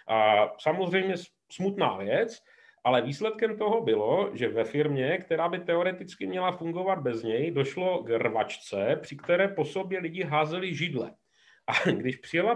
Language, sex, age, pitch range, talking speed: Czech, male, 40-59, 145-190 Hz, 150 wpm